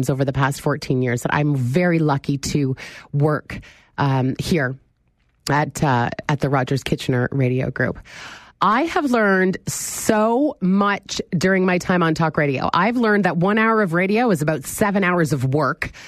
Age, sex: 30-49, female